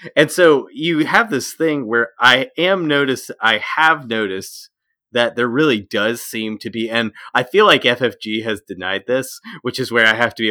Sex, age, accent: male, 30-49, American